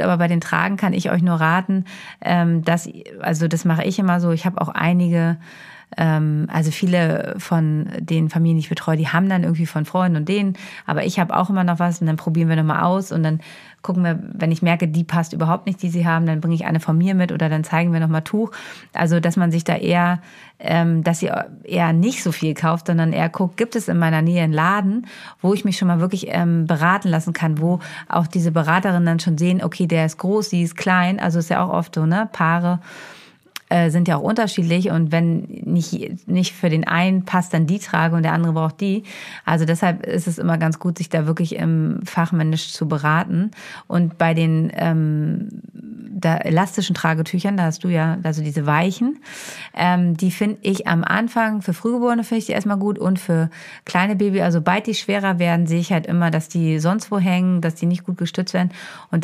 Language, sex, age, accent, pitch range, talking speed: German, female, 30-49, German, 165-190 Hz, 220 wpm